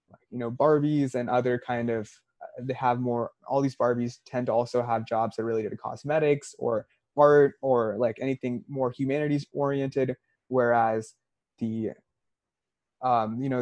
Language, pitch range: English, 110-125 Hz